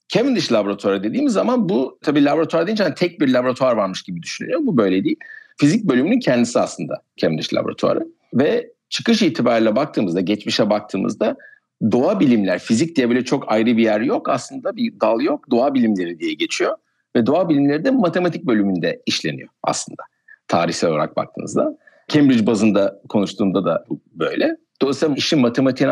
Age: 60-79